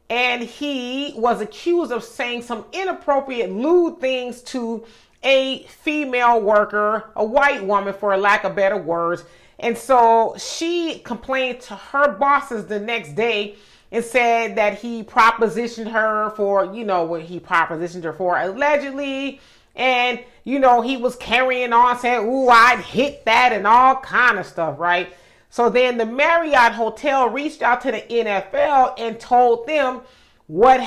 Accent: American